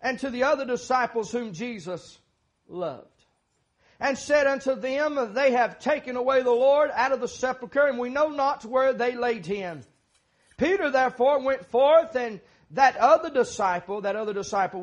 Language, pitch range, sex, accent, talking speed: English, 215-275 Hz, male, American, 165 wpm